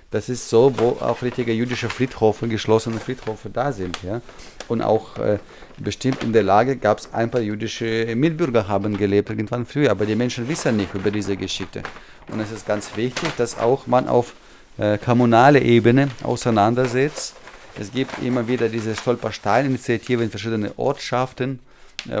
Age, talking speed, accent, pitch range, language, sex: 30-49, 160 wpm, German, 105-120 Hz, German, male